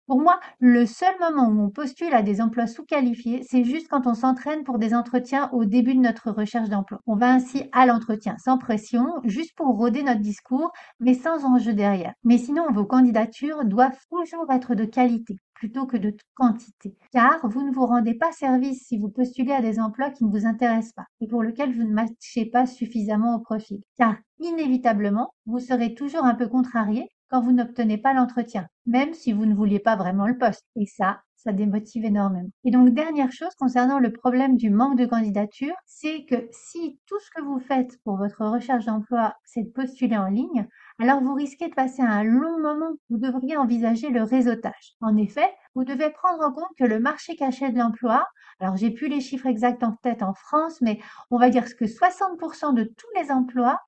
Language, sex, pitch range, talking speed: French, female, 225-265 Hz, 205 wpm